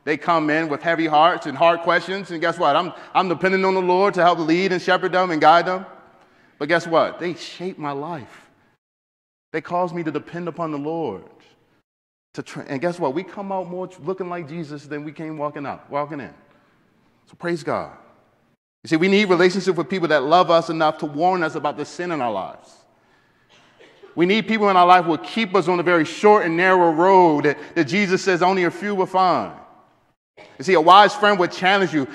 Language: English